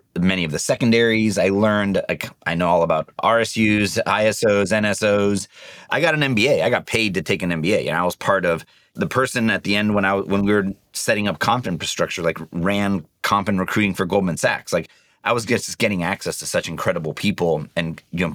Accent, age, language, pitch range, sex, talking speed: American, 30-49, English, 85-105 Hz, male, 220 wpm